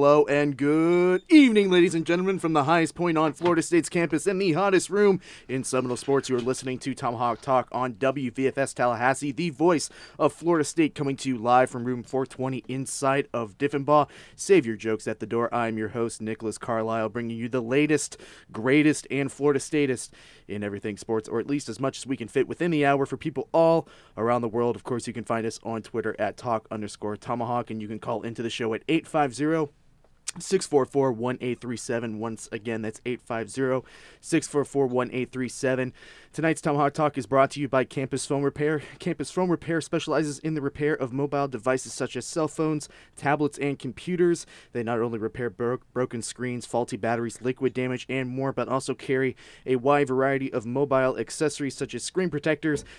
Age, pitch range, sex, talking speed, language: 20-39, 115-150 Hz, male, 190 wpm, English